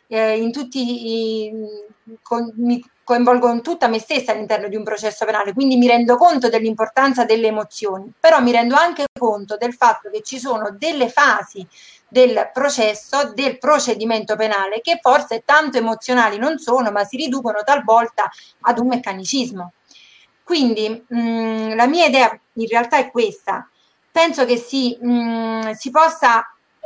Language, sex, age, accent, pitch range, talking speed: Italian, female, 30-49, native, 220-270 Hz, 150 wpm